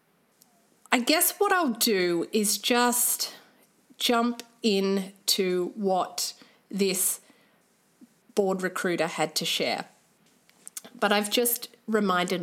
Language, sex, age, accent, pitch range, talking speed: English, female, 30-49, Australian, 195-240 Hz, 100 wpm